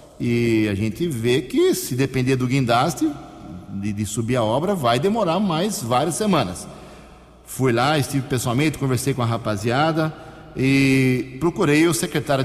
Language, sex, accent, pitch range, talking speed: Portuguese, male, Brazilian, 120-155 Hz, 150 wpm